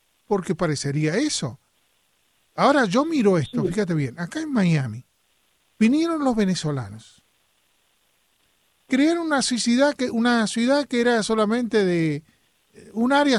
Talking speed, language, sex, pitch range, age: 110 wpm, Spanish, male, 160-225 Hz, 40-59